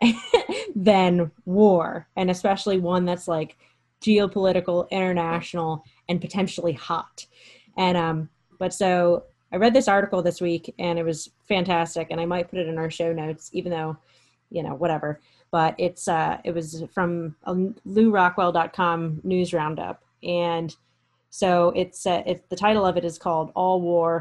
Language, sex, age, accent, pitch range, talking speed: English, female, 20-39, American, 165-185 Hz, 155 wpm